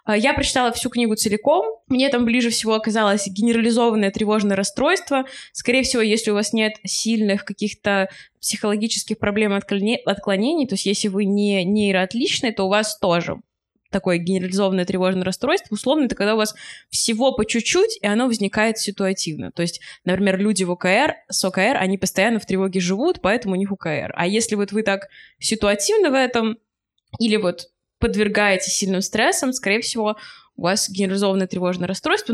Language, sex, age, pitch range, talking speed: Russian, female, 20-39, 190-235 Hz, 160 wpm